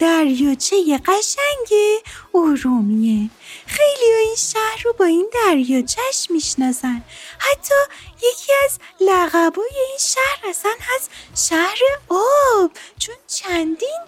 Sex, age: female, 30-49